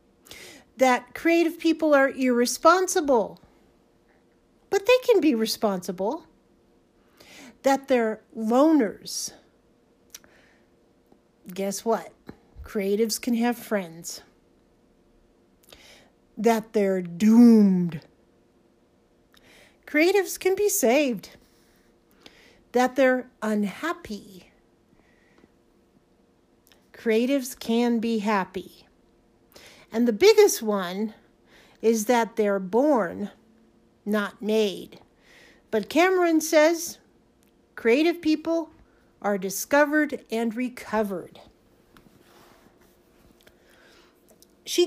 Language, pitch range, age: English, 215-305 Hz, 50-69